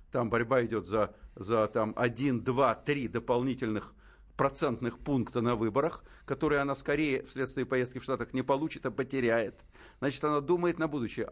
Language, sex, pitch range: Russian, male, 125-160 Hz